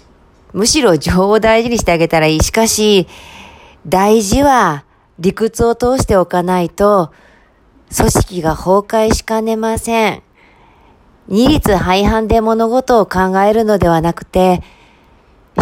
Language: Japanese